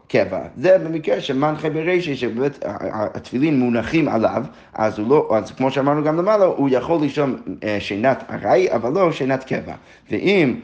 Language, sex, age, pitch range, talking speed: Hebrew, male, 30-49, 110-150 Hz, 165 wpm